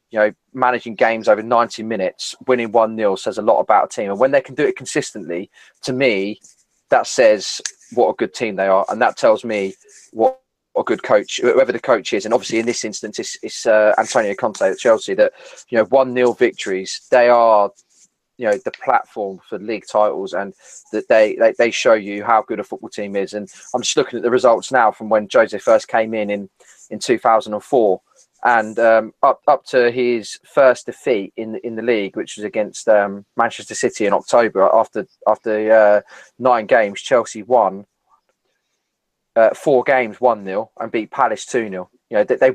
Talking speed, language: 195 wpm, English